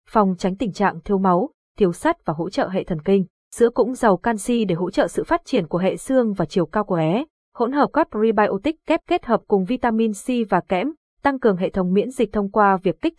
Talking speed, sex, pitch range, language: 245 wpm, female, 185-240 Hz, Vietnamese